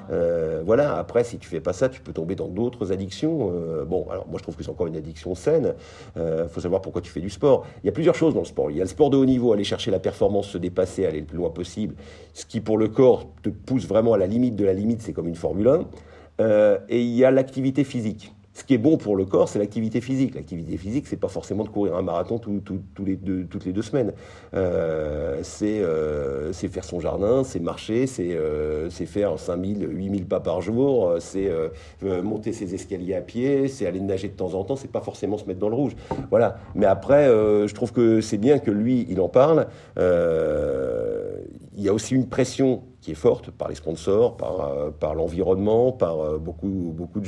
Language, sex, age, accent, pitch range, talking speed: French, male, 50-69, French, 95-130 Hz, 245 wpm